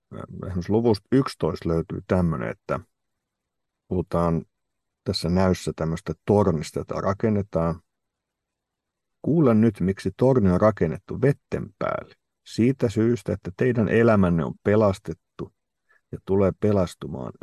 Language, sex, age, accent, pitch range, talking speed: Finnish, male, 50-69, native, 85-110 Hz, 105 wpm